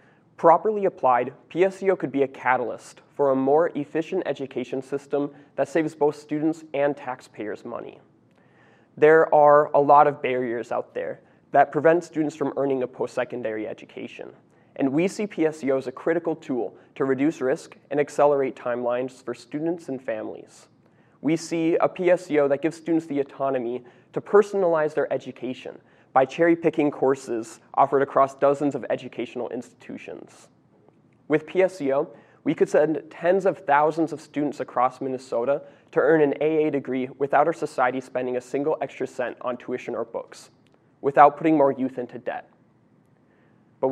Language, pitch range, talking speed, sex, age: English, 135-160 Hz, 155 wpm, male, 20-39